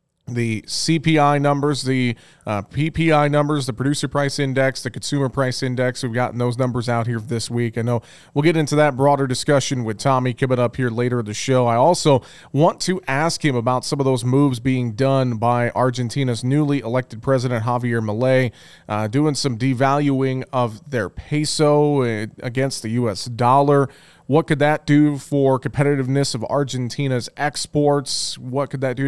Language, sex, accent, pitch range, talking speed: English, male, American, 120-145 Hz, 170 wpm